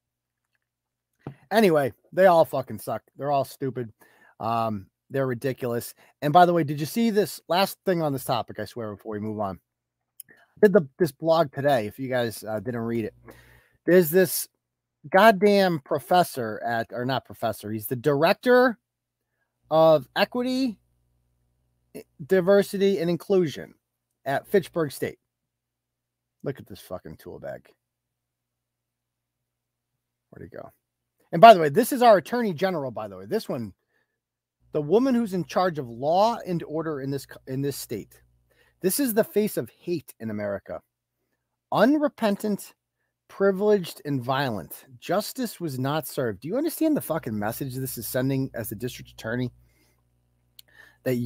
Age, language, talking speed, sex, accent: 40-59, English, 150 wpm, male, American